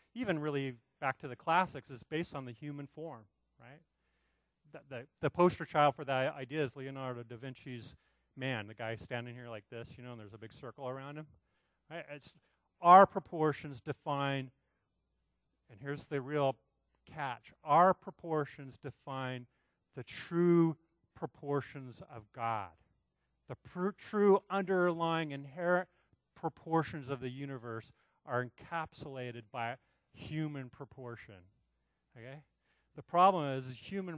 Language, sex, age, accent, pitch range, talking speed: English, male, 40-59, American, 115-160 Hz, 140 wpm